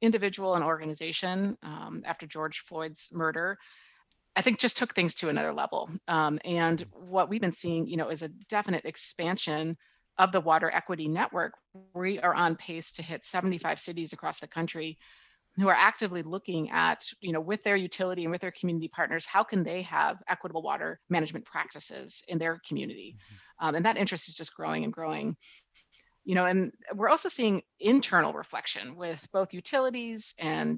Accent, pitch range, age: American, 160-195 Hz, 30-49